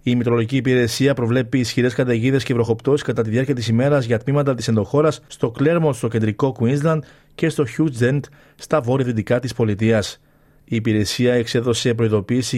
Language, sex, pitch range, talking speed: Greek, male, 115-145 Hz, 155 wpm